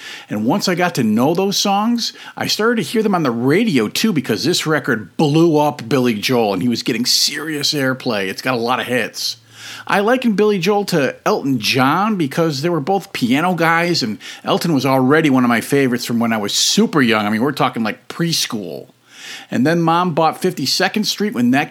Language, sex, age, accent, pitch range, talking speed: English, male, 50-69, American, 130-195 Hz, 215 wpm